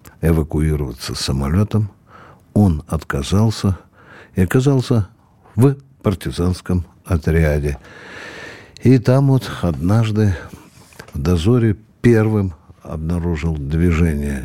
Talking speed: 75 wpm